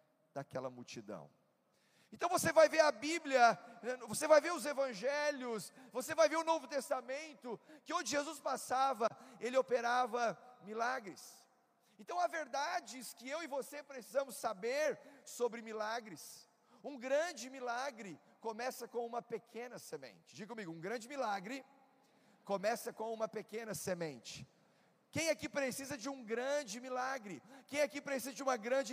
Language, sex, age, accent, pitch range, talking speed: Portuguese, male, 40-59, Brazilian, 220-285 Hz, 145 wpm